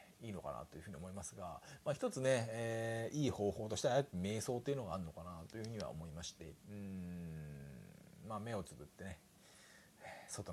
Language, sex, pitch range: Japanese, male, 90-130 Hz